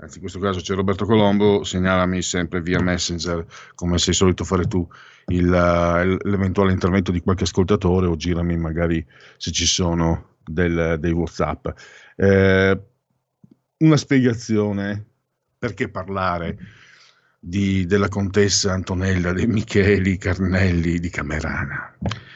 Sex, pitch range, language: male, 90-105 Hz, Italian